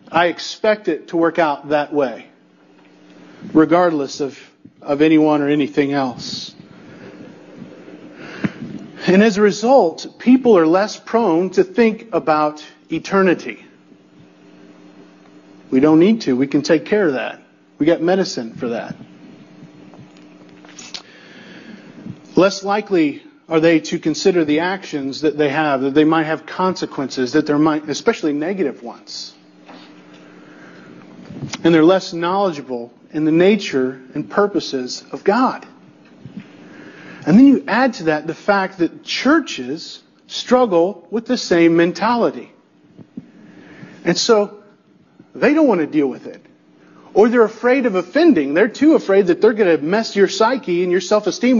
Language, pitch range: English, 150-215 Hz